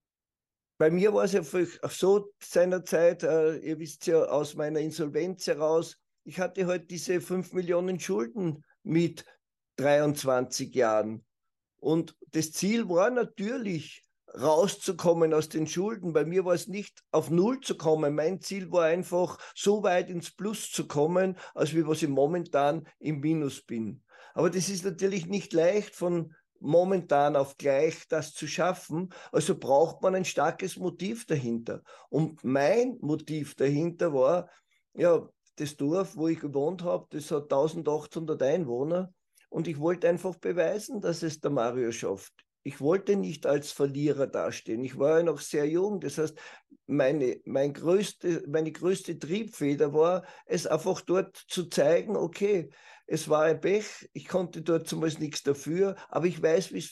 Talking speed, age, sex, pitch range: 155 wpm, 50-69, male, 150-185 Hz